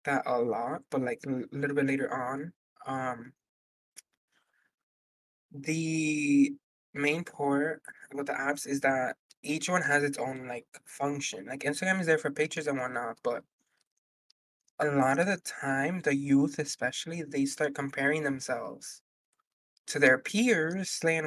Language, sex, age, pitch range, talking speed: English, male, 20-39, 135-155 Hz, 145 wpm